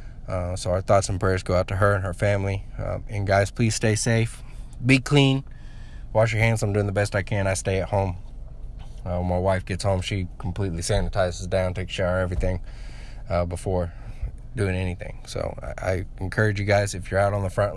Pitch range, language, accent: 95-110 Hz, English, American